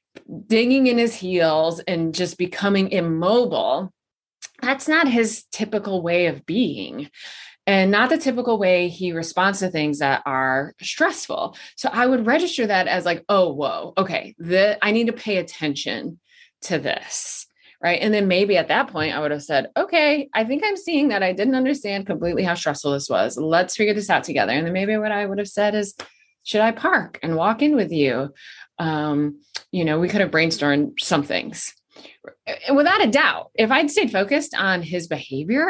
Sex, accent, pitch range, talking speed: female, American, 170-255 Hz, 185 wpm